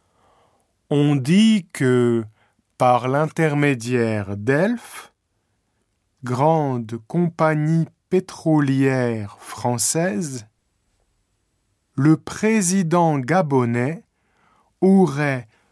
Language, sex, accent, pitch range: Japanese, male, French, 110-155 Hz